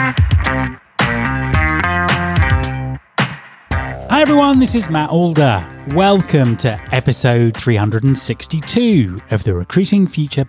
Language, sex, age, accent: English, male, 30-49, British